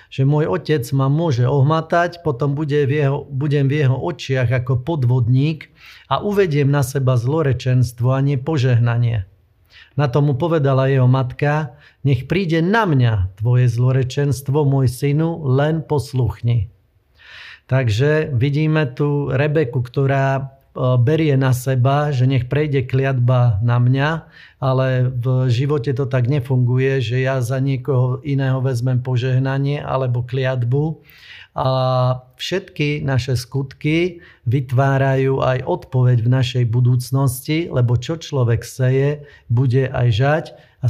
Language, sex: Slovak, male